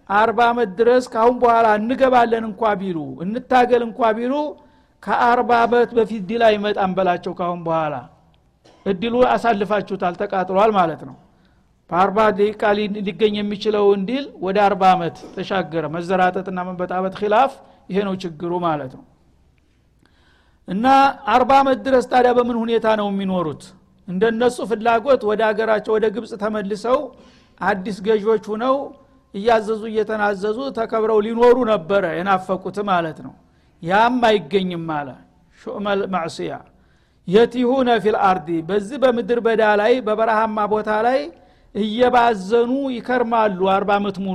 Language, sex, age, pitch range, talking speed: Amharic, male, 60-79, 190-235 Hz, 85 wpm